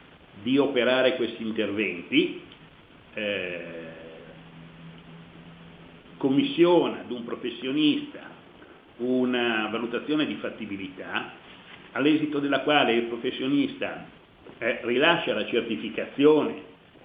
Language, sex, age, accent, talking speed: Italian, male, 60-79, native, 75 wpm